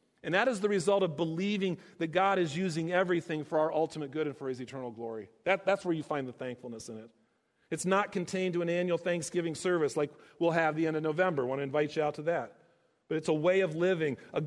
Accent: American